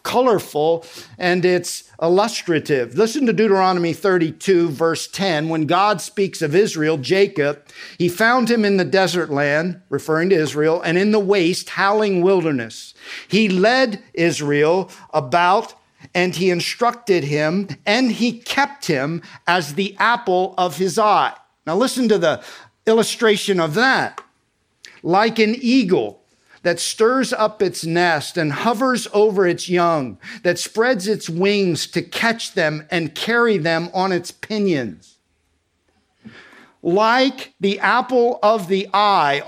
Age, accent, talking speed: 50-69, American, 135 wpm